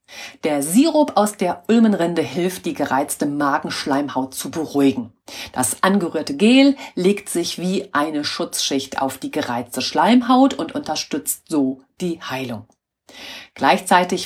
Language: German